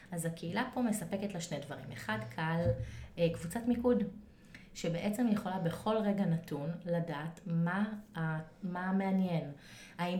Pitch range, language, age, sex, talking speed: 160-185 Hz, Hebrew, 20-39, female, 125 wpm